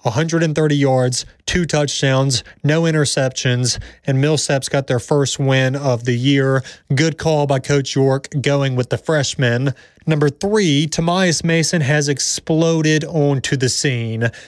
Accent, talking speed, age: American, 135 wpm, 30-49